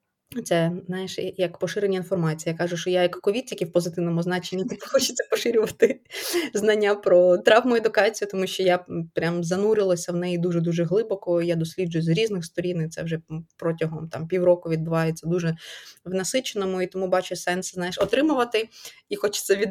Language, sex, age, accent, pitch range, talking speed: Ukrainian, female, 20-39, native, 165-195 Hz, 165 wpm